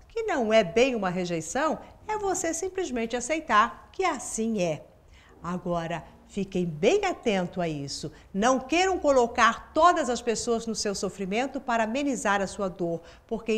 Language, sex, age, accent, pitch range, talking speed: Portuguese, female, 50-69, Brazilian, 195-290 Hz, 150 wpm